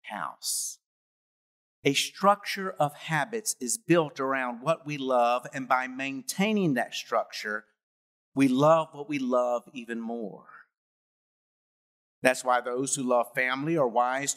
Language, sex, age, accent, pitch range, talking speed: English, male, 50-69, American, 125-165 Hz, 130 wpm